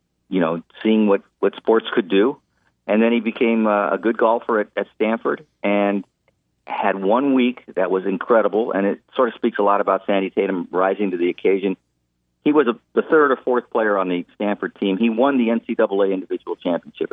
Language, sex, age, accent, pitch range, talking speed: English, male, 50-69, American, 85-105 Hz, 205 wpm